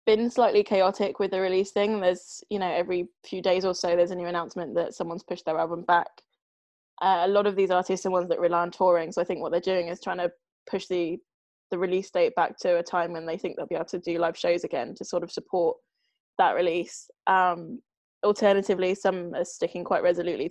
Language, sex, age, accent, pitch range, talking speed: English, female, 20-39, British, 175-195 Hz, 230 wpm